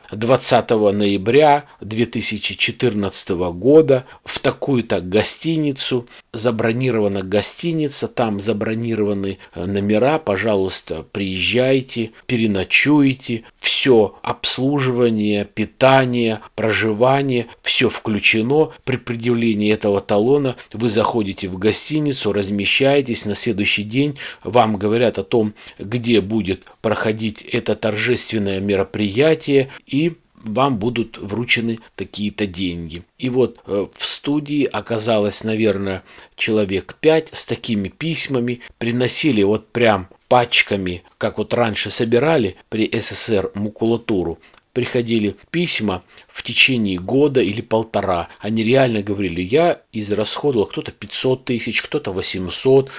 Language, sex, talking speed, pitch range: Russian, male, 100 wpm, 105-130 Hz